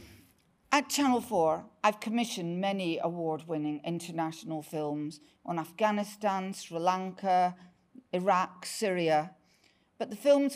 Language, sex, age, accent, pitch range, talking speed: English, female, 50-69, British, 165-220 Hz, 100 wpm